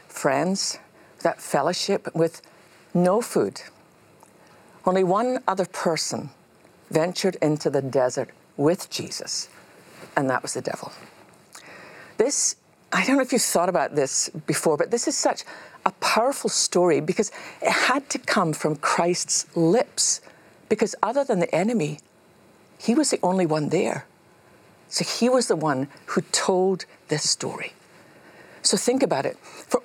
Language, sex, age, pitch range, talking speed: English, female, 50-69, 165-220 Hz, 145 wpm